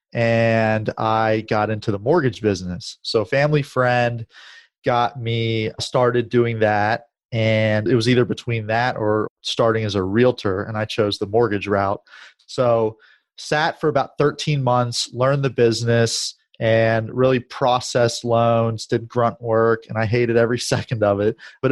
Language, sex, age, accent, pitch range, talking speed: English, male, 30-49, American, 110-125 Hz, 155 wpm